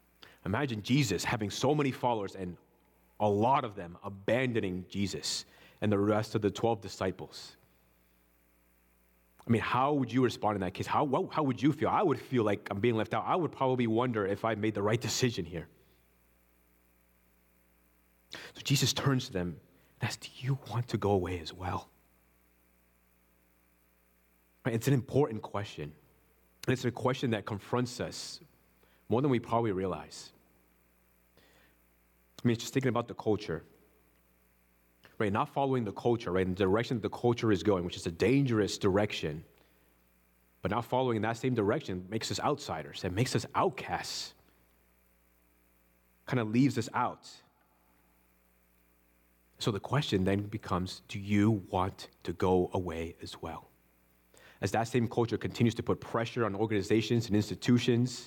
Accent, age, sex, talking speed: American, 30-49, male, 160 wpm